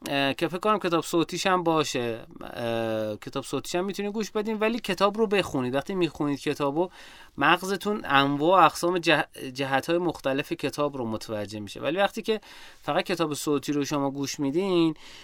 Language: Persian